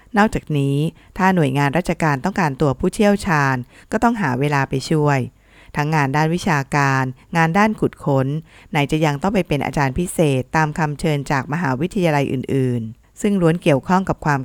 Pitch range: 135-170 Hz